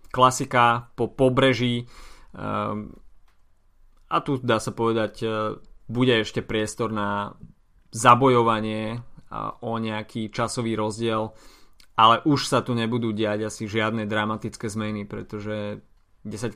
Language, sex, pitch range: Slovak, male, 110-130 Hz